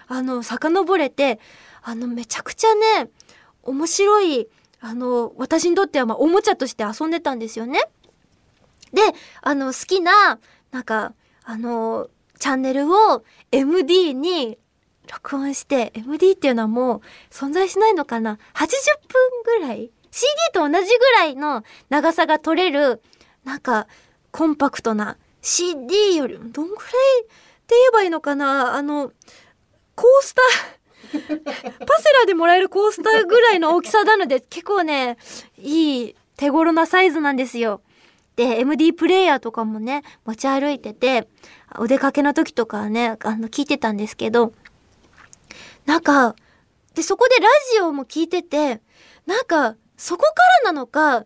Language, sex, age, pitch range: Japanese, female, 20-39, 250-370 Hz